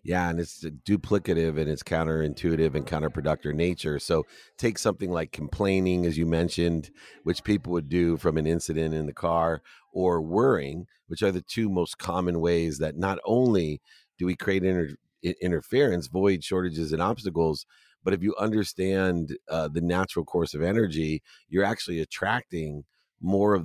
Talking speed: 165 wpm